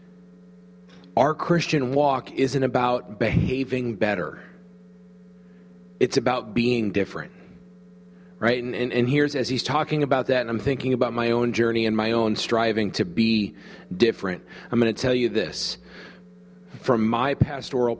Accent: American